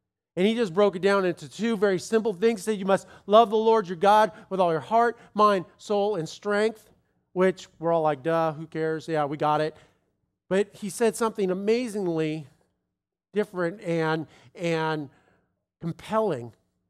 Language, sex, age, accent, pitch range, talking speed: English, male, 50-69, American, 165-225 Hz, 165 wpm